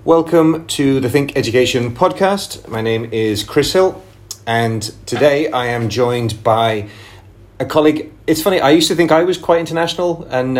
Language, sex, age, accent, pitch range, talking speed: English, male, 30-49, British, 110-135 Hz, 170 wpm